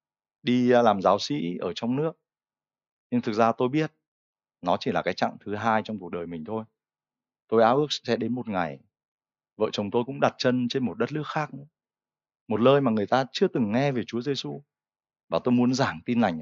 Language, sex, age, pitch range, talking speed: Vietnamese, male, 20-39, 105-150 Hz, 220 wpm